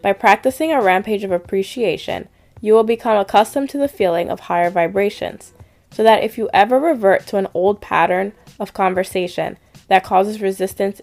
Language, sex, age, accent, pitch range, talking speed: English, female, 10-29, American, 185-225 Hz, 170 wpm